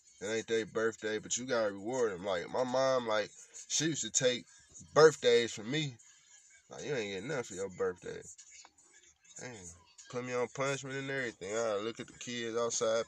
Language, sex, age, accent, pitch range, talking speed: English, male, 20-39, American, 110-165 Hz, 195 wpm